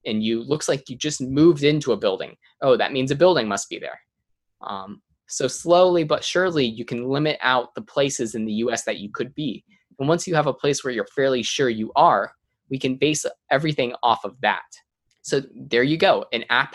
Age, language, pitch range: 20-39, English, 110-145 Hz